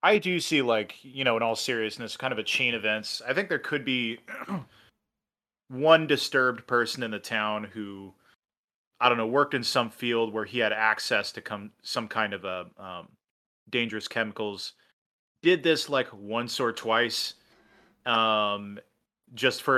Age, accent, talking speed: 30-49, American, 165 wpm